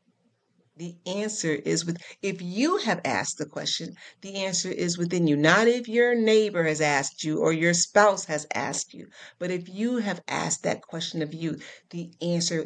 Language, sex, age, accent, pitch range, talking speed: English, female, 40-59, American, 160-190 Hz, 185 wpm